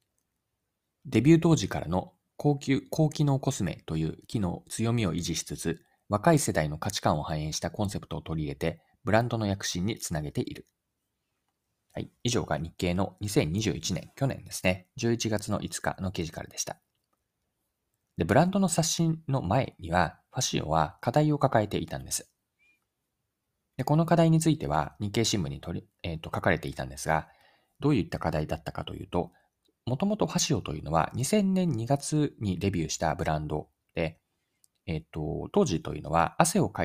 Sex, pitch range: male, 80-130 Hz